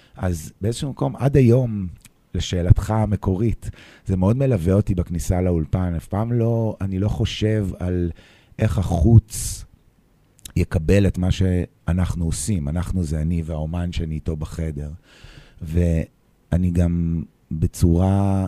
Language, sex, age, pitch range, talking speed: Hebrew, male, 30-49, 80-105 Hz, 120 wpm